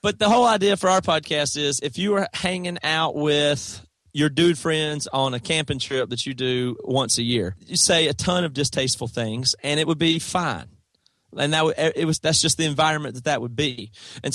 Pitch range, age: 125-155 Hz, 30-49